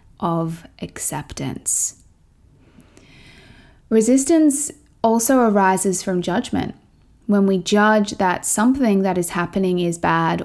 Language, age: English, 20-39